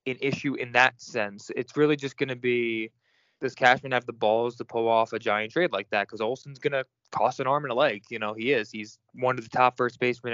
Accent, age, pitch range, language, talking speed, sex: American, 20-39, 110-135 Hz, English, 255 wpm, male